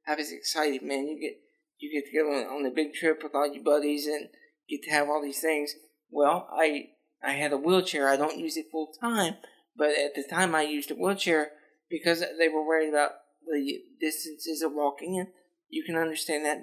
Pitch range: 150-180 Hz